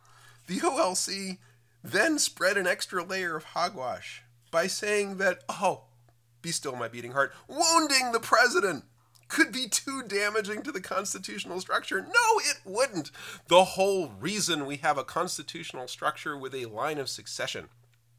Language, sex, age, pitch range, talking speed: English, male, 40-59, 120-180 Hz, 150 wpm